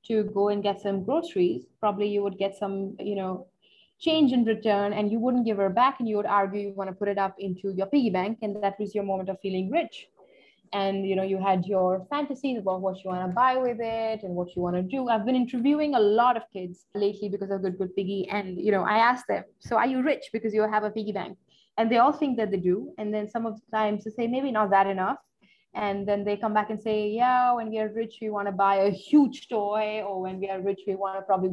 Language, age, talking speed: English, 20-39, 270 wpm